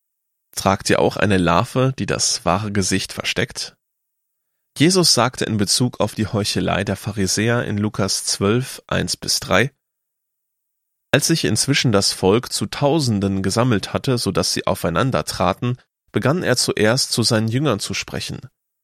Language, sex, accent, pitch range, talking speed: German, male, German, 95-120 Hz, 140 wpm